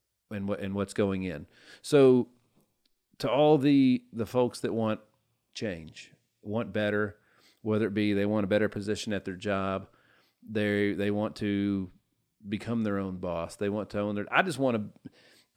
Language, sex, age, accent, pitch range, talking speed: English, male, 40-59, American, 100-120 Hz, 175 wpm